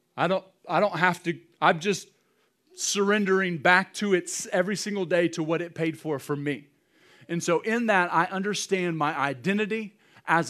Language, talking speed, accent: English, 175 wpm, American